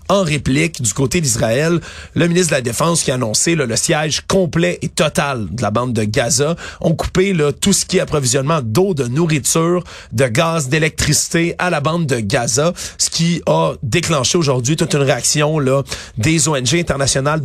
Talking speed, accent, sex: 190 wpm, Canadian, male